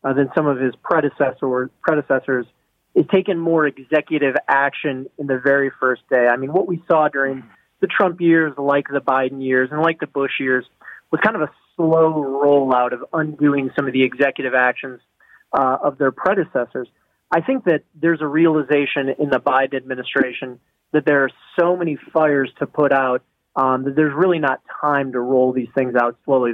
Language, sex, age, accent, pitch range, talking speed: English, male, 30-49, American, 130-150 Hz, 190 wpm